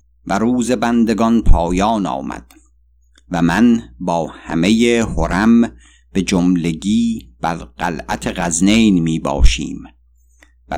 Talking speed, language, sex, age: 100 wpm, Persian, male, 50-69